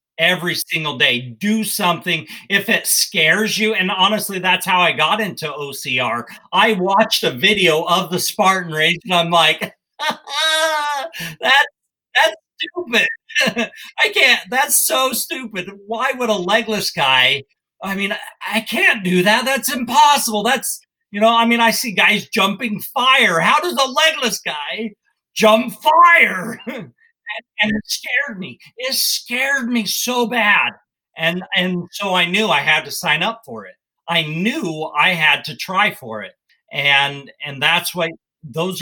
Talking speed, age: 155 wpm, 50-69